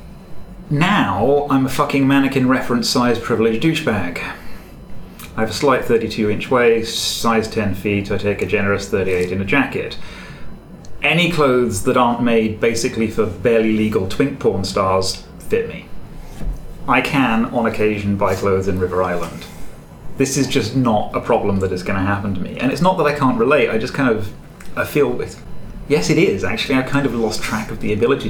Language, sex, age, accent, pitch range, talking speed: English, male, 30-49, British, 100-130 Hz, 185 wpm